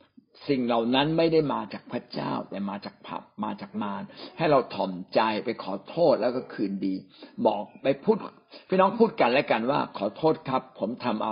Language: Thai